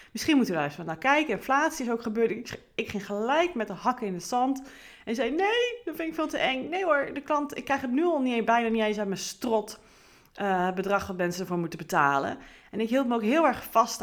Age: 30-49